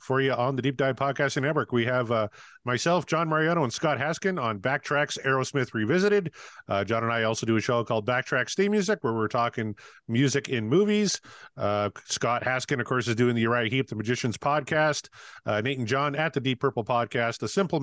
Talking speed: 210 wpm